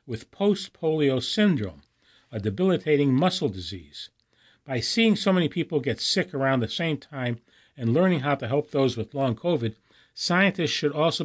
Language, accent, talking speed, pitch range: English, American, 160 wpm, 120-150 Hz